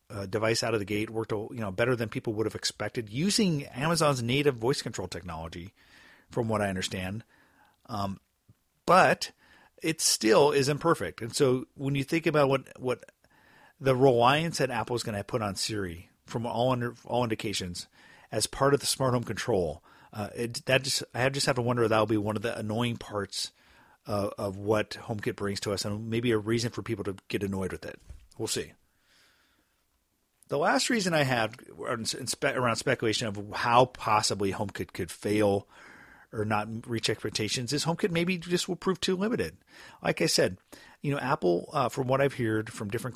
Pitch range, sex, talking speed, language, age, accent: 105-135 Hz, male, 190 wpm, English, 40-59, American